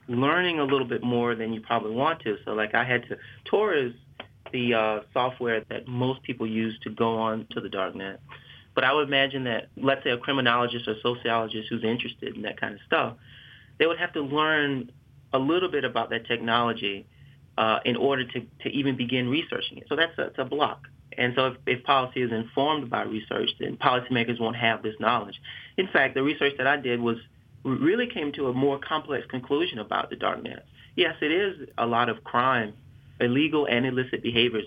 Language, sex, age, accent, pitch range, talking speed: English, male, 30-49, American, 115-135 Hz, 205 wpm